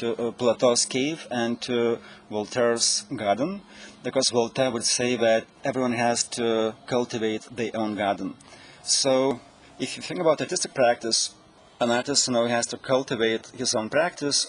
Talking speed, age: 145 wpm, 30-49